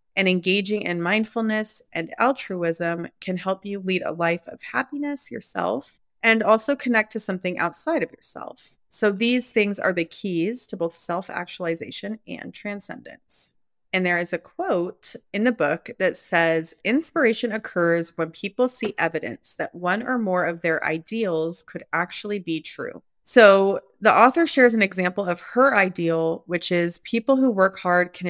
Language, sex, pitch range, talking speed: English, female, 170-215 Hz, 165 wpm